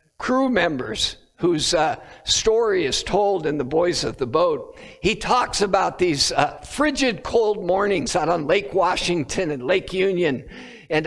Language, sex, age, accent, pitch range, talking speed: English, male, 60-79, American, 170-260 Hz, 155 wpm